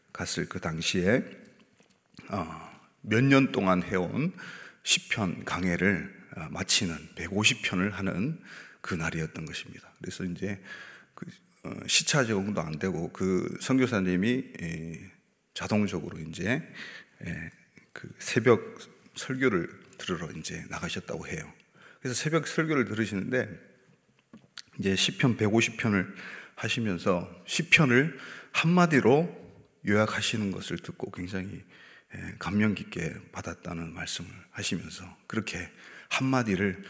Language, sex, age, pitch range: Korean, male, 30-49, 90-130 Hz